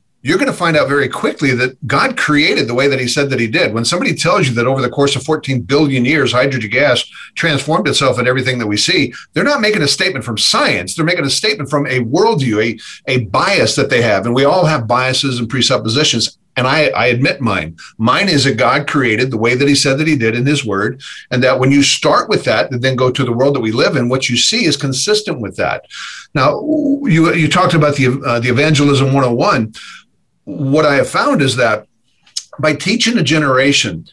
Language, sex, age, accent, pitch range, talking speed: English, male, 50-69, American, 120-150 Hz, 230 wpm